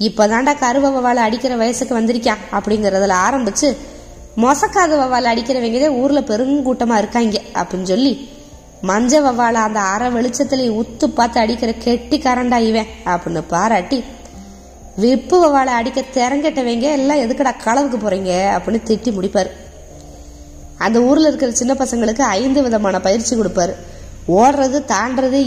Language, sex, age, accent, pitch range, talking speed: Tamil, female, 20-39, native, 205-265 Hz, 110 wpm